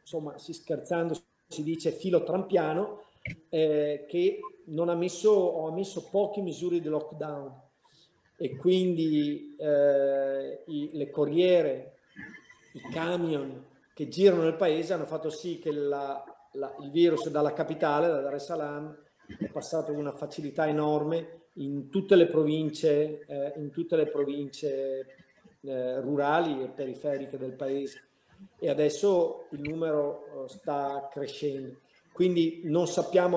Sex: male